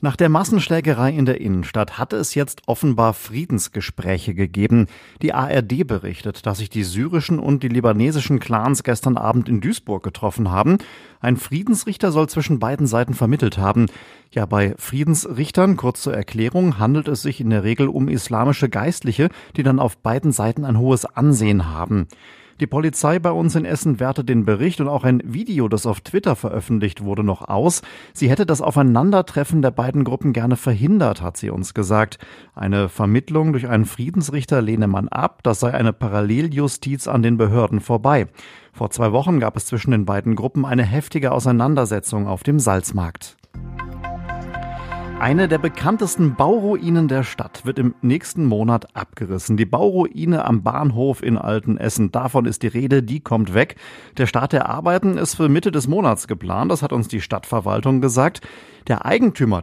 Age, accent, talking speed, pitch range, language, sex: 40-59, German, 170 wpm, 110-145 Hz, German, male